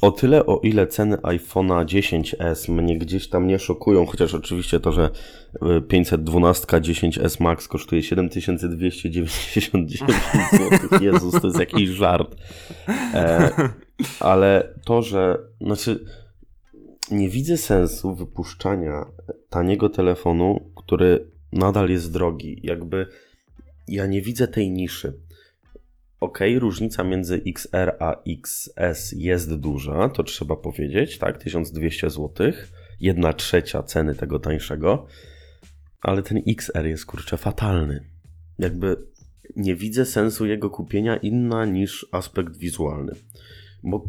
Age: 20-39